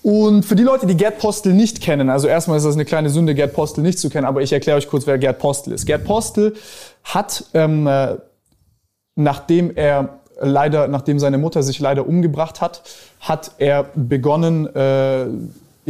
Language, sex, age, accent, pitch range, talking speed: German, male, 20-39, German, 135-165 Hz, 180 wpm